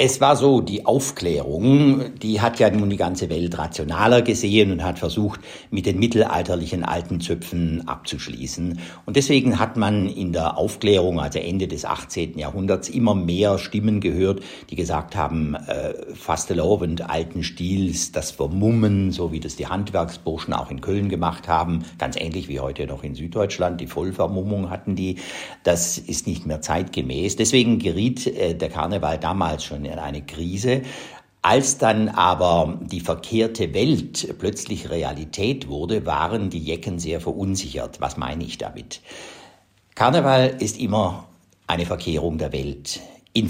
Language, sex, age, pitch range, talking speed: German, male, 60-79, 85-105 Hz, 150 wpm